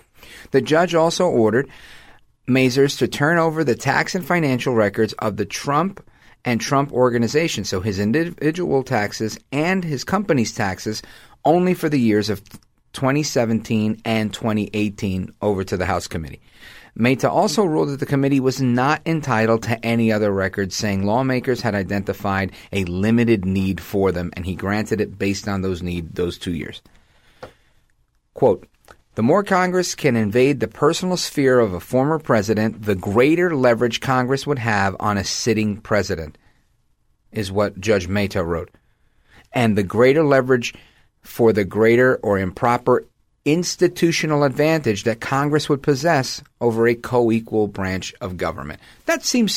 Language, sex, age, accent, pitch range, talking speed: English, male, 40-59, American, 105-140 Hz, 150 wpm